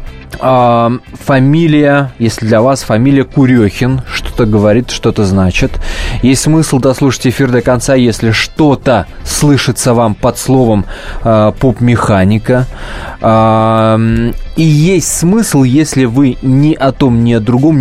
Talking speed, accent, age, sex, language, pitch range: 120 wpm, native, 20-39, male, Russian, 110-135 Hz